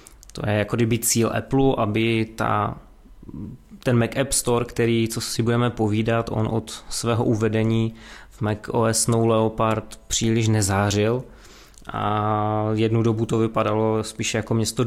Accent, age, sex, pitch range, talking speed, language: native, 20-39, male, 110-120 Hz, 140 wpm, Czech